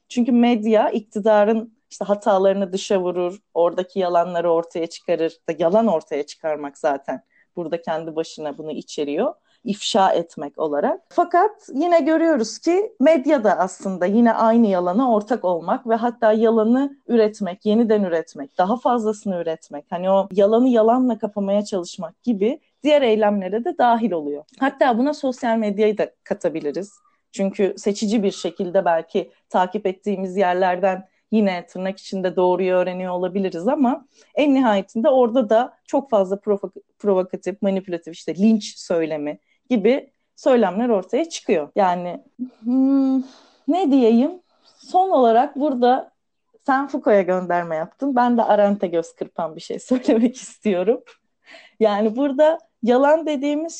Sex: female